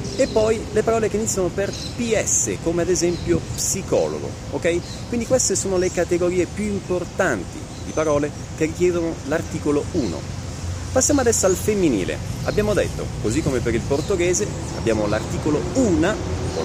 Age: 30-49